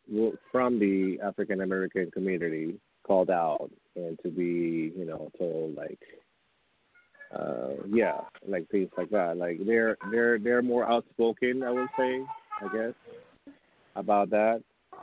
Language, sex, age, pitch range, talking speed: English, male, 30-49, 95-125 Hz, 130 wpm